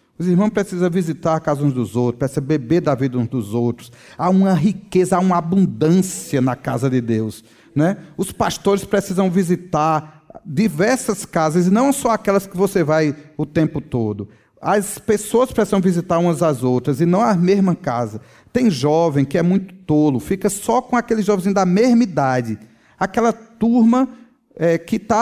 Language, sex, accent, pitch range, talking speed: Portuguese, male, Brazilian, 145-215 Hz, 175 wpm